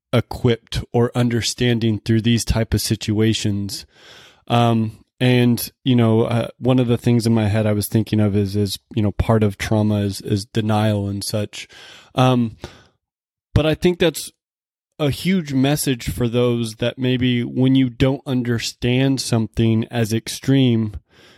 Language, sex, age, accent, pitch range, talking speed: English, male, 20-39, American, 110-130 Hz, 155 wpm